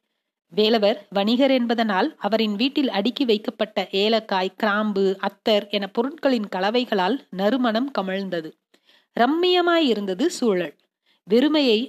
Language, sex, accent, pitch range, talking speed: Tamil, female, native, 200-270 Hz, 90 wpm